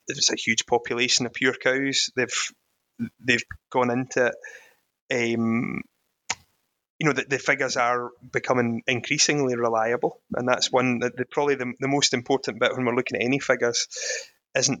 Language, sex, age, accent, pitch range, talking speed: English, male, 20-39, British, 120-135 Hz, 160 wpm